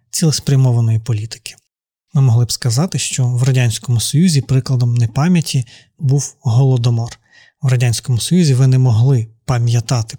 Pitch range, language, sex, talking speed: 120-140 Hz, Ukrainian, male, 125 wpm